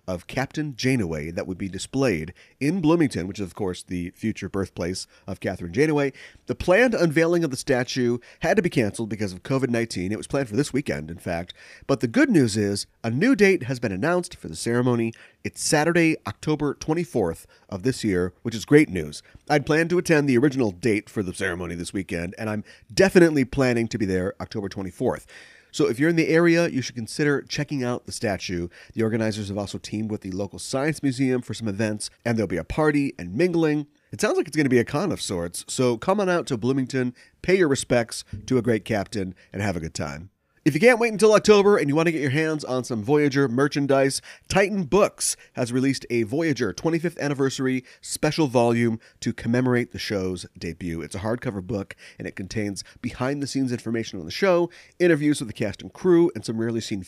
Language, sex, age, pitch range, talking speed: English, male, 30-49, 100-145 Hz, 210 wpm